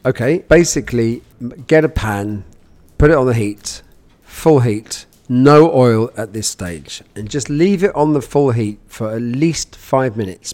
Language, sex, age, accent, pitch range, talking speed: English, male, 40-59, British, 100-135 Hz, 170 wpm